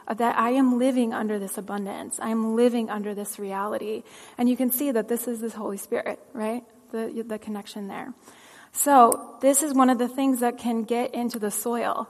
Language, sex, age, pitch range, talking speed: English, female, 20-39, 220-255 Hz, 205 wpm